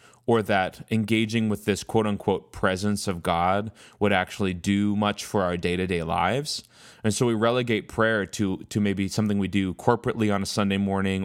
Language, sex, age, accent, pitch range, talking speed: English, male, 20-39, American, 95-115 Hz, 175 wpm